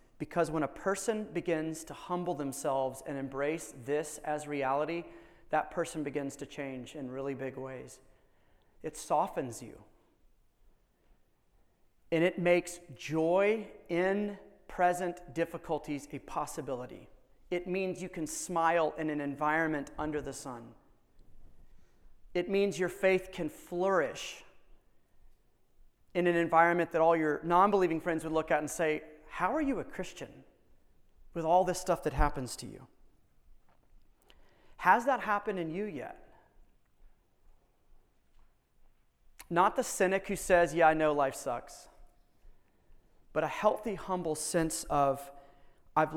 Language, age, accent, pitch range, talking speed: English, 30-49, American, 140-175 Hz, 130 wpm